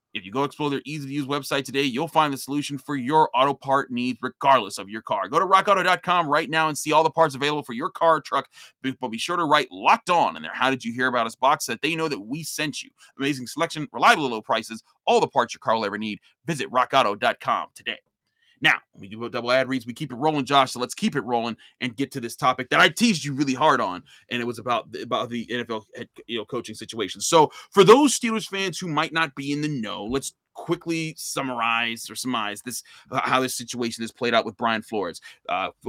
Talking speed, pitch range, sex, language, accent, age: 240 wpm, 120-155 Hz, male, English, American, 30-49